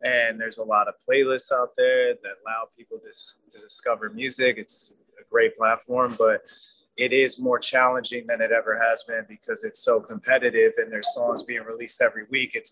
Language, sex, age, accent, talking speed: English, male, 20-39, American, 195 wpm